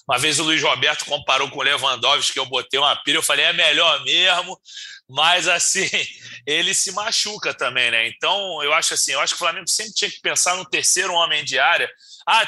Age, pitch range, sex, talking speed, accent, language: 30-49, 155-205 Hz, male, 215 wpm, Brazilian, Portuguese